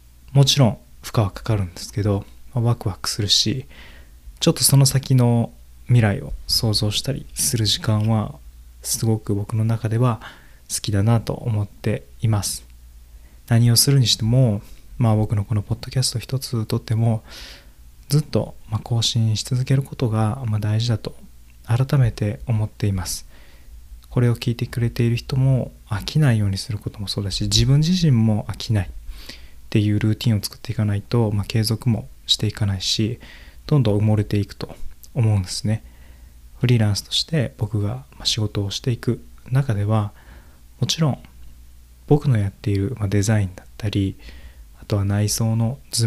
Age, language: 20-39, Japanese